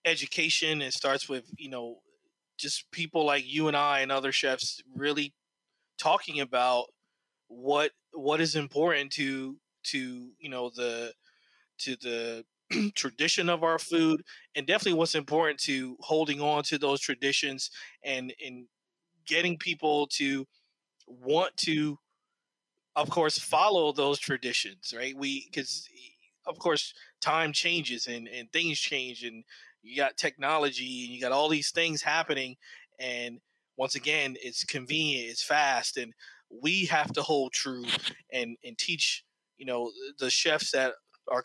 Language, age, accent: English, 20-39, American